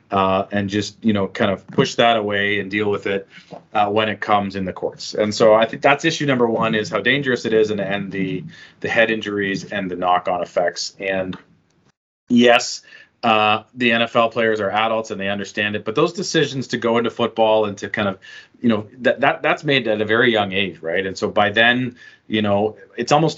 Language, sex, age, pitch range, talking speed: English, male, 30-49, 105-120 Hz, 220 wpm